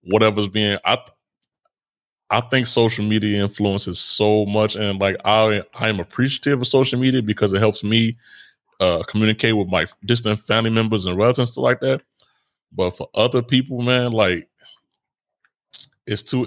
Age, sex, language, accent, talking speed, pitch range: 30-49, male, English, American, 160 wpm, 100-120 Hz